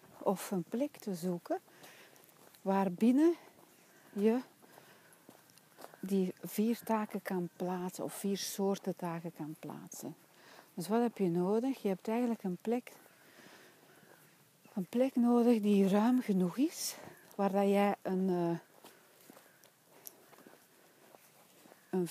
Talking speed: 105 wpm